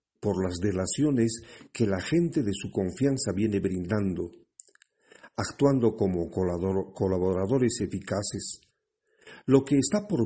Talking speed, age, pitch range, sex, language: 110 wpm, 50-69, 95-135 Hz, male, Spanish